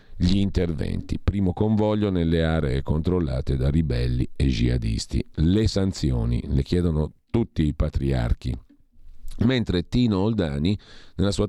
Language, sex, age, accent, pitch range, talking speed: Italian, male, 50-69, native, 80-105 Hz, 120 wpm